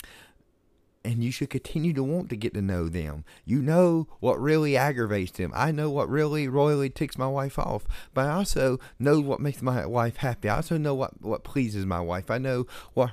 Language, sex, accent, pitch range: English, male, American, 110-145 Hz